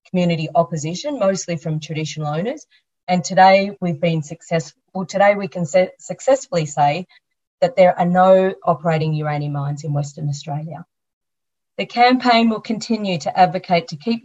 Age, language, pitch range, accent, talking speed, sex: 30-49, English, 155-185 Hz, Australian, 145 wpm, female